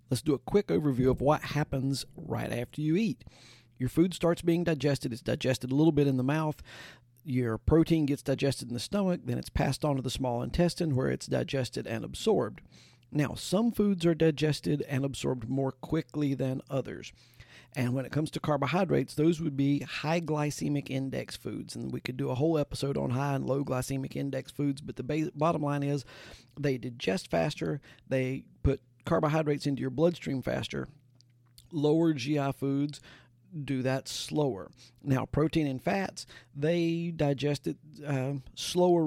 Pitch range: 130-155 Hz